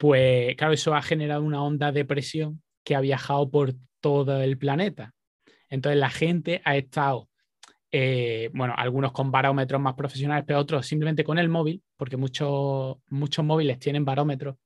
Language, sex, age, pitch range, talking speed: Spanish, male, 20-39, 130-150 Hz, 165 wpm